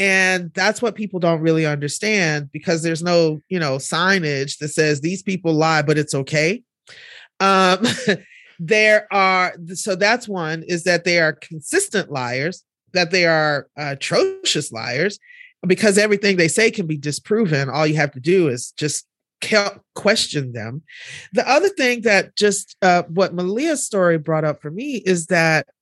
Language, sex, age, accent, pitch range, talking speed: English, male, 30-49, American, 150-195 Hz, 160 wpm